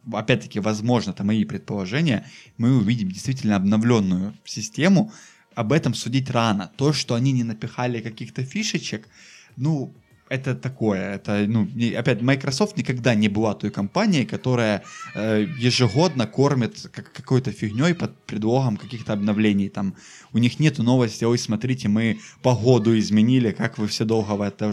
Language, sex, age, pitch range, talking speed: Russian, male, 20-39, 110-130 Hz, 145 wpm